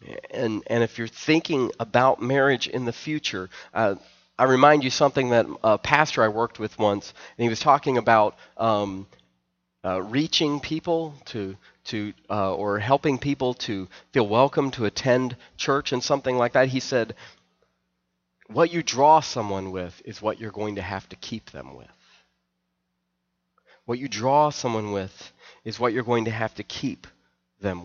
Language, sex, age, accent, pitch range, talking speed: English, male, 30-49, American, 90-135 Hz, 170 wpm